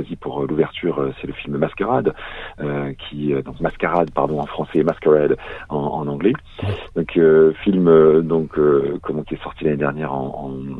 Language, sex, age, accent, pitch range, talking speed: French, male, 40-59, French, 75-90 Hz, 165 wpm